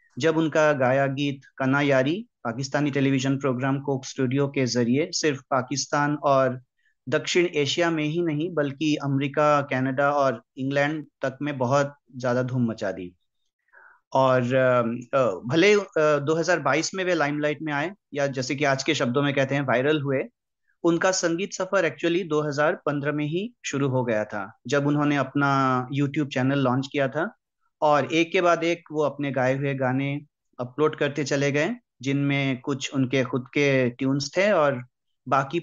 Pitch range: 135-160 Hz